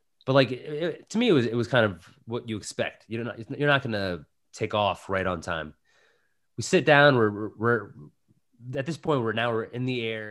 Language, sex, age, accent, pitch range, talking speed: English, male, 20-39, American, 105-140 Hz, 235 wpm